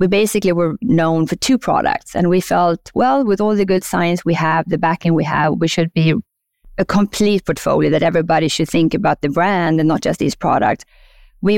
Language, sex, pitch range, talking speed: English, female, 160-205 Hz, 210 wpm